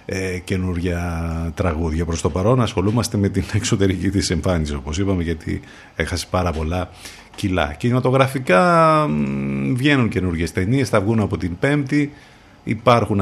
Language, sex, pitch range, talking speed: Greek, male, 85-110 Hz, 130 wpm